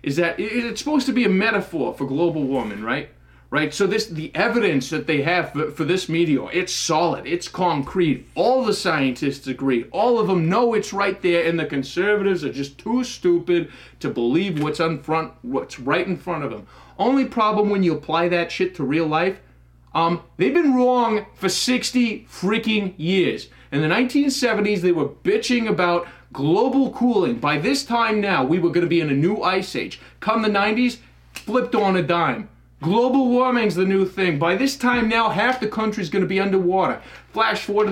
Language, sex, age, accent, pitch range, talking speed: English, male, 30-49, American, 160-215 Hz, 195 wpm